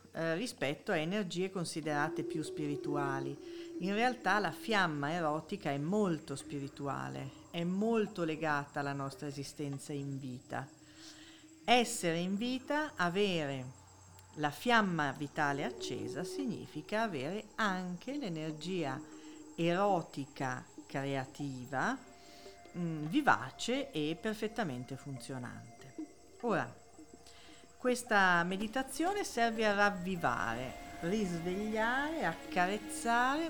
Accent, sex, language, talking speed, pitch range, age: native, female, Italian, 90 wpm, 150-240 Hz, 50-69